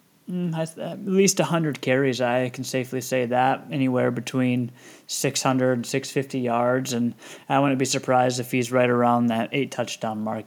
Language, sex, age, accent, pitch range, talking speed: English, male, 20-39, American, 115-130 Hz, 155 wpm